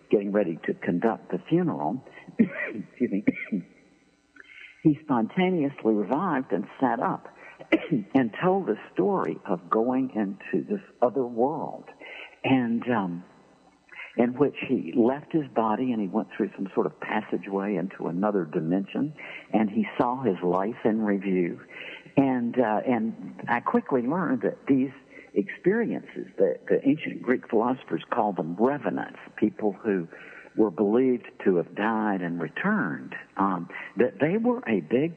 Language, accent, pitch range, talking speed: English, American, 100-155 Hz, 140 wpm